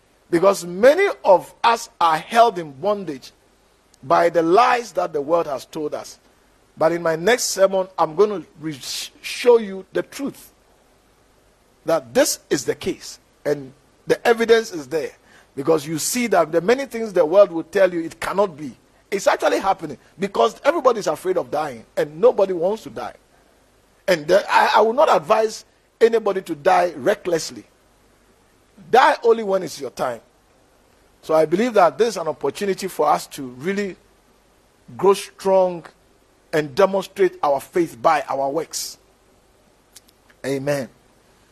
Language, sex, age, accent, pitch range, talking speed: English, male, 50-69, Nigerian, 140-200 Hz, 155 wpm